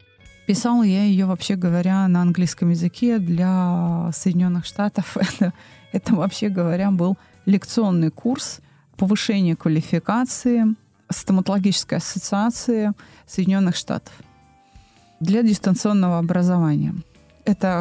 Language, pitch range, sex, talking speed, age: Russian, 180-230 Hz, female, 95 wpm, 30-49